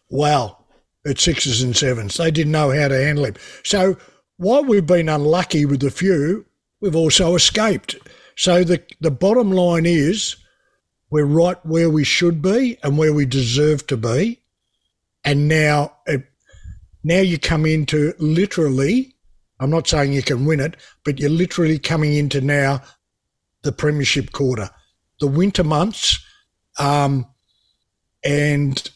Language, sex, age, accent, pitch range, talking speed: English, male, 60-79, Australian, 140-180 Hz, 145 wpm